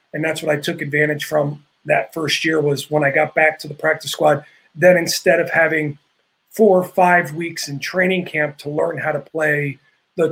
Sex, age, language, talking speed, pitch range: male, 30-49, English, 210 wpm, 145-160 Hz